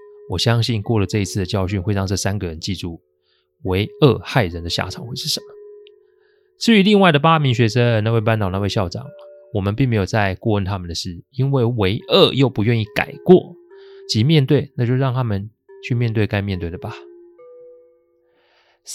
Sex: male